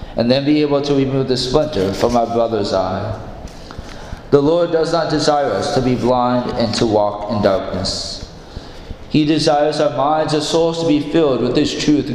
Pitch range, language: 120-160 Hz, English